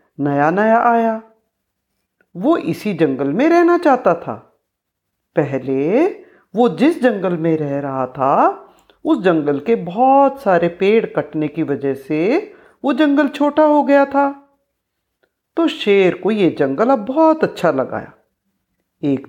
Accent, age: native, 50-69